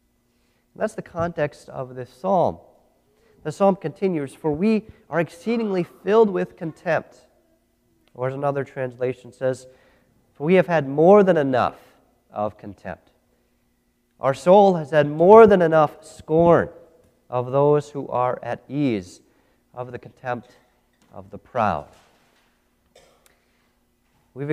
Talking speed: 125 wpm